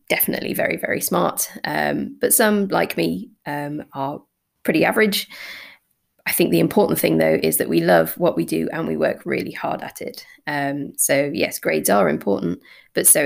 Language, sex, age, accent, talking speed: English, female, 20-39, British, 185 wpm